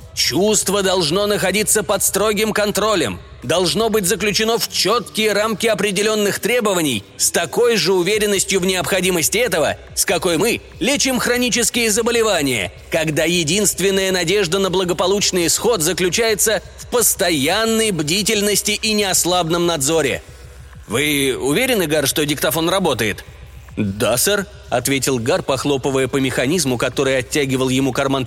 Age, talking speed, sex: 30-49, 120 wpm, male